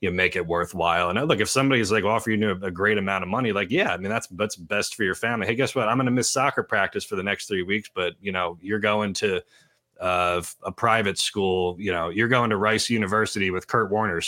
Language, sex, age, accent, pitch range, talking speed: English, male, 30-49, American, 95-125 Hz, 250 wpm